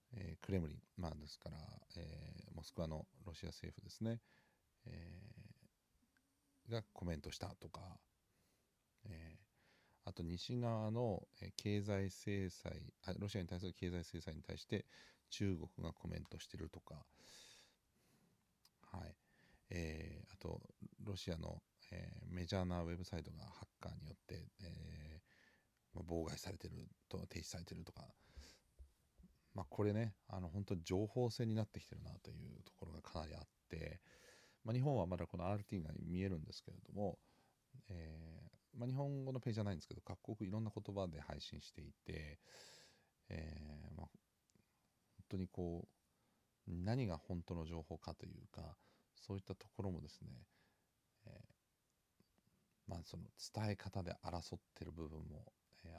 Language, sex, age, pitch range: Japanese, male, 40-59, 85-105 Hz